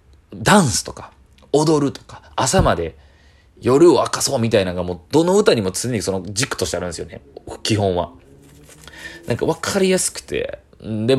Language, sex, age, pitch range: Japanese, male, 30-49, 85-120 Hz